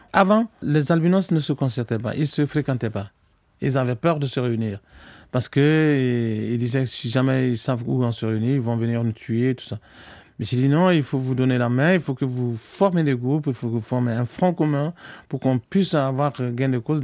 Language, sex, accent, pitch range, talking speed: French, male, French, 120-165 Hz, 245 wpm